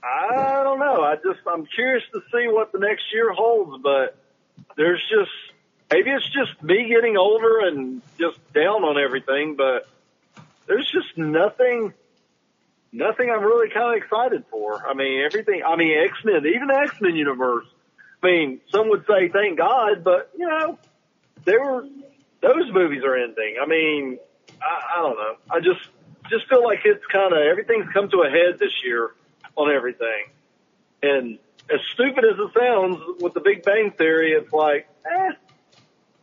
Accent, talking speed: American, 165 wpm